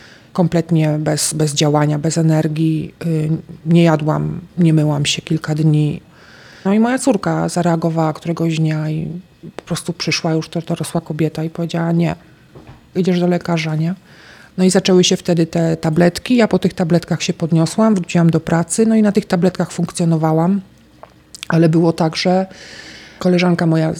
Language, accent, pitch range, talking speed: Polish, native, 165-185 Hz, 160 wpm